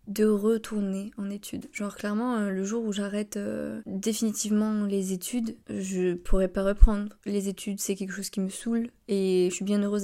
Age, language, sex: 20-39, French, female